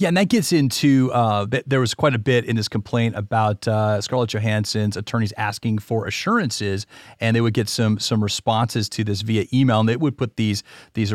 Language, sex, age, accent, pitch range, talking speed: English, male, 40-59, American, 110-135 Hz, 215 wpm